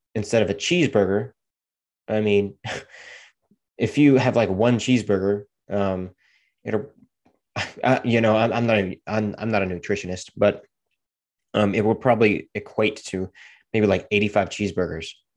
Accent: American